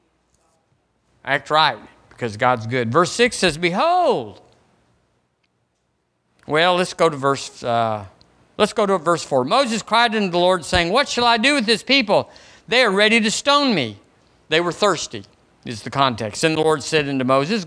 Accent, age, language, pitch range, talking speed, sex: American, 50-69, English, 125-200 Hz, 175 wpm, male